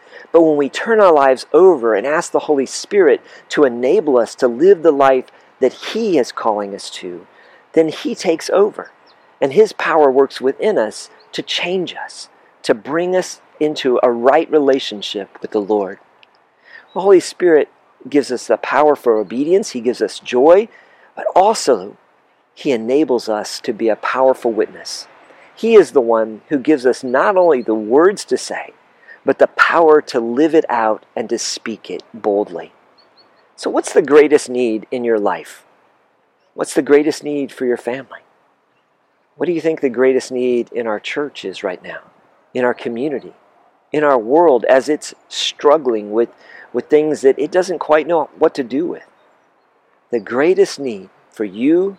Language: English